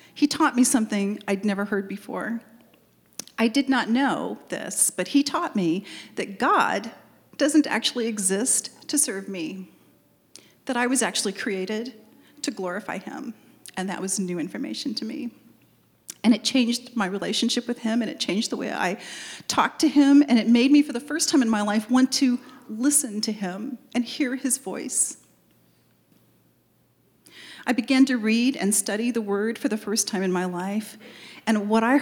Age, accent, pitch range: 40-59, American, 205-260 Hz